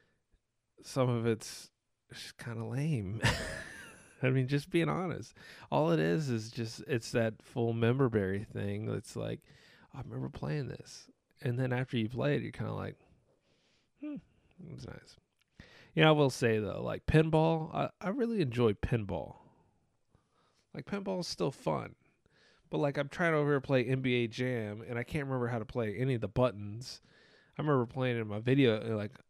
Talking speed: 180 wpm